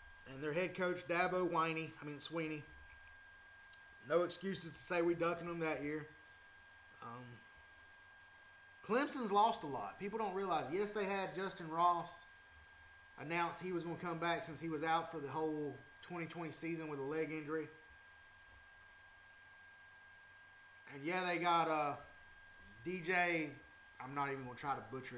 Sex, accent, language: male, American, English